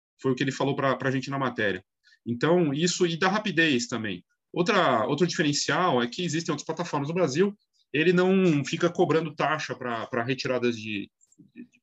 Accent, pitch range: Brazilian, 125-170 Hz